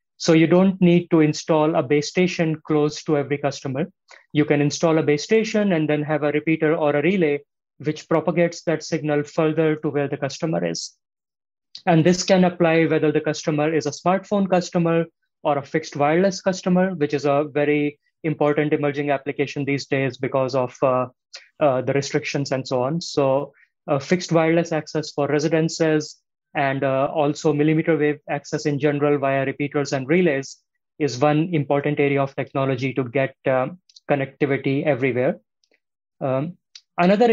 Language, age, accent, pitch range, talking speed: English, 20-39, Indian, 145-165 Hz, 165 wpm